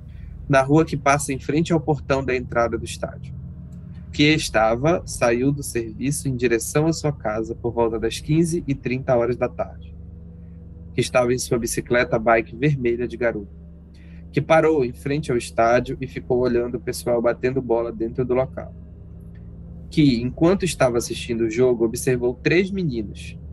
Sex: male